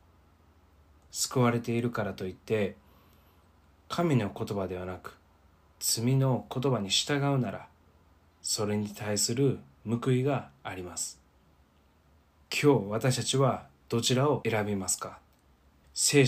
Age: 20-39